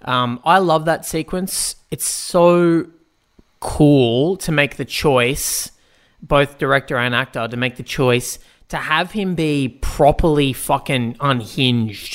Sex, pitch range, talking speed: male, 135-165 Hz, 135 wpm